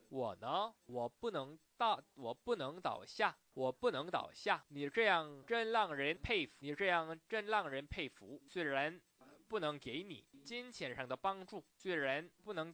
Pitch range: 130-185 Hz